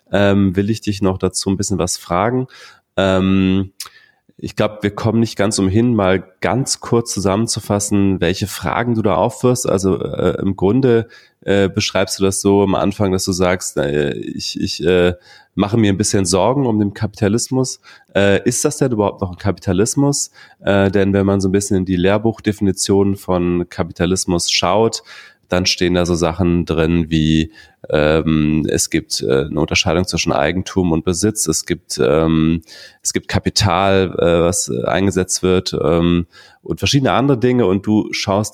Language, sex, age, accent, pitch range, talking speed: German, male, 30-49, German, 90-105 Hz, 170 wpm